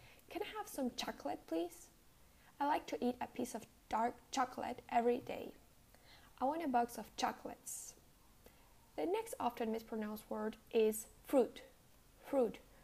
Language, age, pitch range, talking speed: English, 10-29, 215-260 Hz, 145 wpm